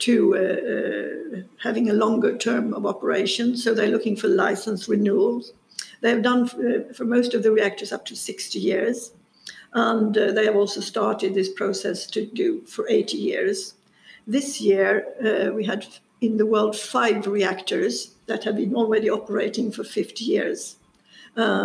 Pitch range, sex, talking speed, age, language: 205-235 Hz, female, 165 wpm, 60-79, English